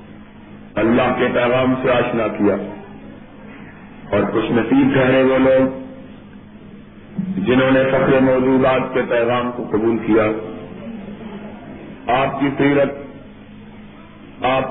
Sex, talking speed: male, 110 wpm